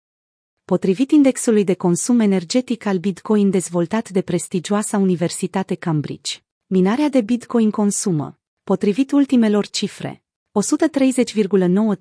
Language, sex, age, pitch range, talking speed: Romanian, female, 30-49, 175-235 Hz, 100 wpm